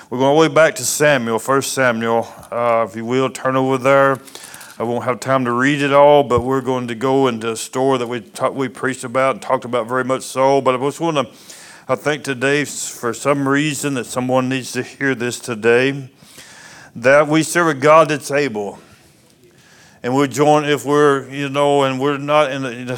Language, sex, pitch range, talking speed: English, male, 125-150 Hz, 215 wpm